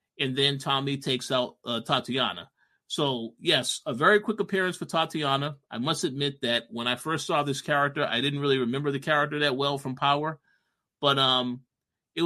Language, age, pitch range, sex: English, 30-49, 125-150 Hz, male